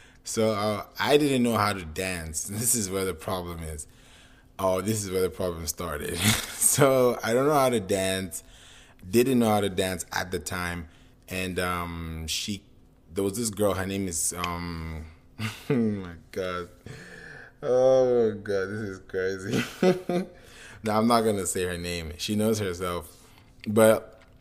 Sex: male